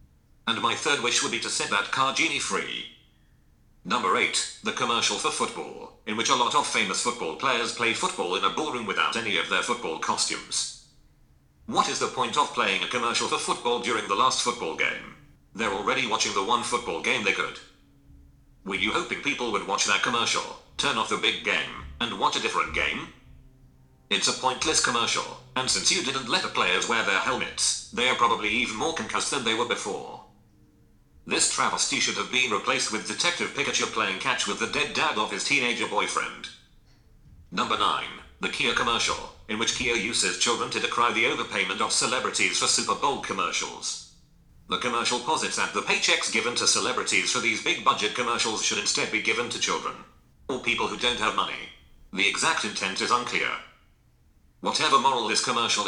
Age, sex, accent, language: 40-59, male, British, English